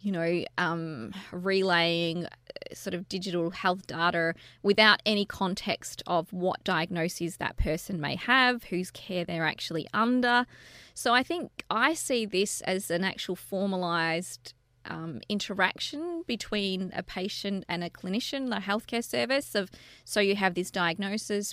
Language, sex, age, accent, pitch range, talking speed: English, female, 20-39, Australian, 175-220 Hz, 140 wpm